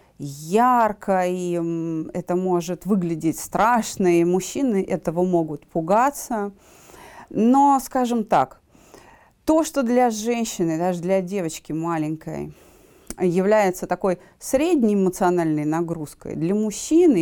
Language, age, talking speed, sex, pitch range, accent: Russian, 30-49, 100 wpm, female, 175-240 Hz, native